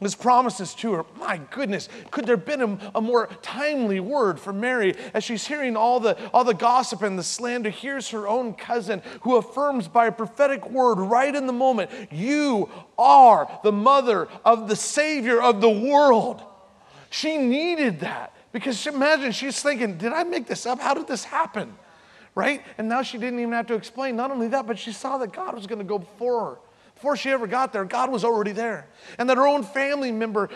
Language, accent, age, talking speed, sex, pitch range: English, American, 30-49, 210 wpm, male, 200-255 Hz